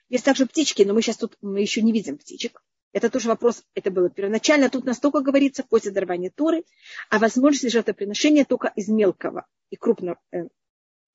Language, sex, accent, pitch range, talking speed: Russian, female, native, 205-265 Hz, 185 wpm